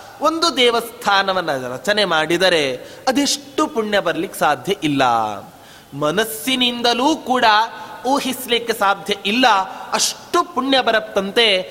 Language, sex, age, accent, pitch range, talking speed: Kannada, male, 30-49, native, 190-260 Hz, 85 wpm